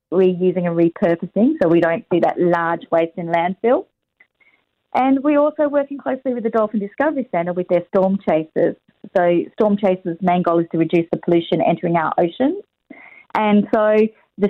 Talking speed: 175 wpm